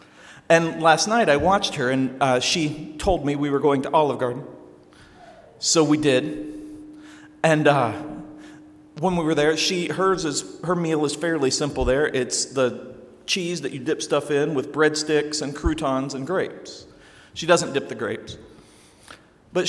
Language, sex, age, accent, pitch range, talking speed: English, male, 40-59, American, 135-195 Hz, 170 wpm